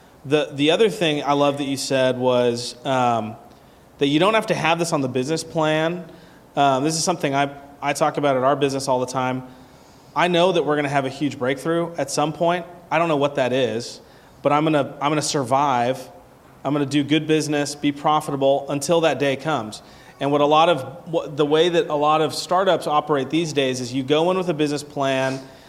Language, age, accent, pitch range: English, 30-49, American, 130-155 Hz